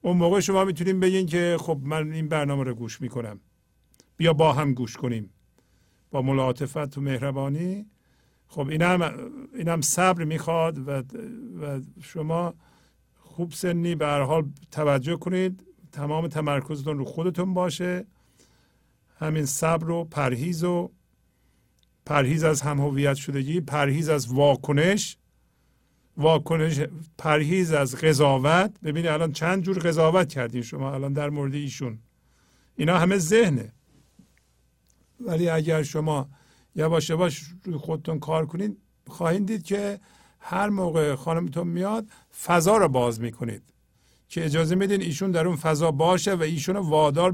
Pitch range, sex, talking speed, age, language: 140-175 Hz, male, 130 wpm, 50-69, Persian